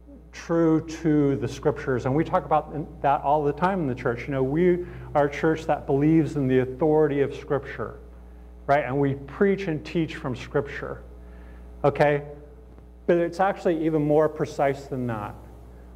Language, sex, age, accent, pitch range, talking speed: English, male, 50-69, American, 115-170 Hz, 170 wpm